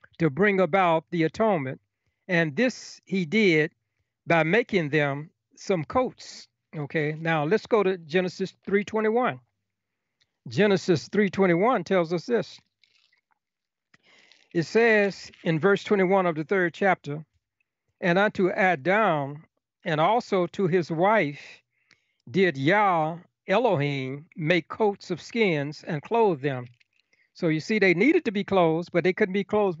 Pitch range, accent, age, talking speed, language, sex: 150-195 Hz, American, 60-79, 135 wpm, English, male